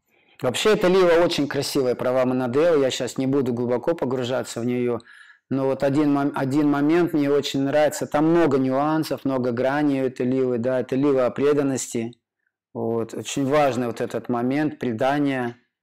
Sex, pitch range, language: male, 125-150 Hz, Russian